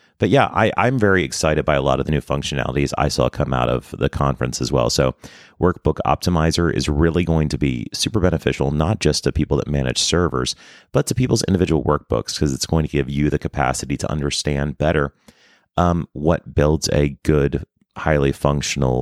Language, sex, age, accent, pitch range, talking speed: English, male, 30-49, American, 70-80 Hz, 190 wpm